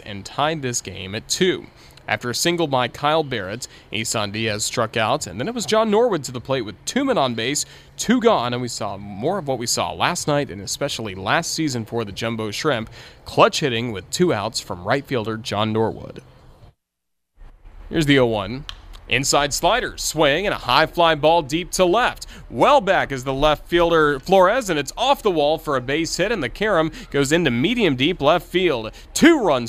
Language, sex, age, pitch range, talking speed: English, male, 30-49, 115-160 Hz, 200 wpm